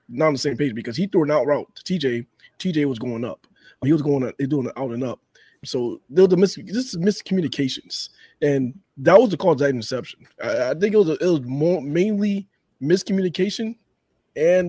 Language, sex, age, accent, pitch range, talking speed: English, male, 20-39, American, 140-190 Hz, 210 wpm